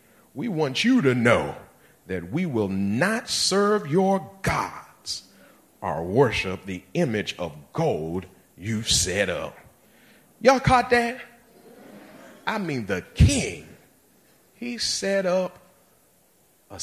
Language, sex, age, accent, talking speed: English, male, 40-59, American, 115 wpm